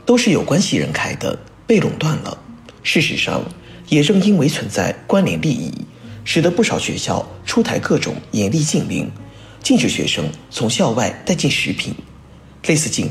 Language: Chinese